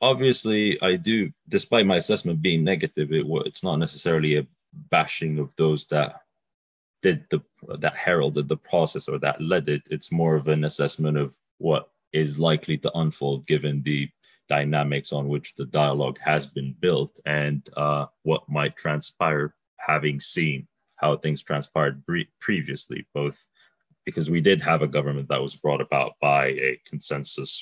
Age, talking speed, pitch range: 30-49, 155 wpm, 75-80 Hz